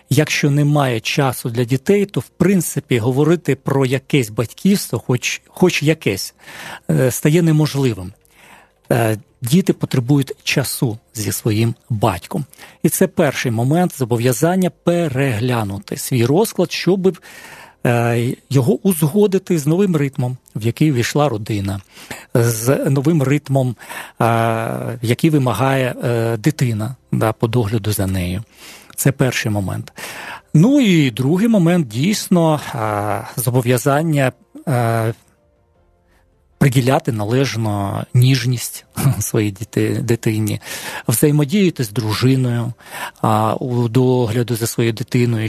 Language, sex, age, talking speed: Ukrainian, male, 40-59, 95 wpm